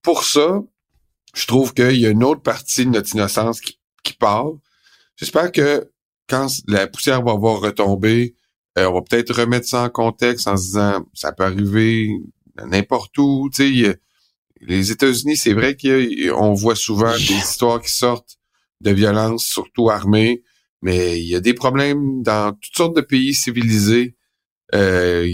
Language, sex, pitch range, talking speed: French, male, 100-130 Hz, 165 wpm